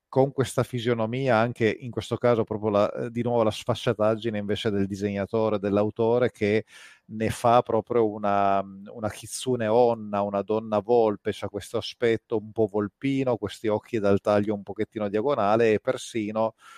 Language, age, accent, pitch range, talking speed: Italian, 30-49, native, 105-125 Hz, 155 wpm